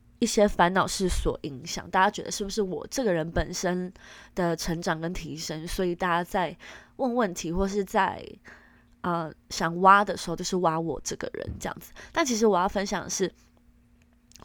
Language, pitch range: Chinese, 180-245 Hz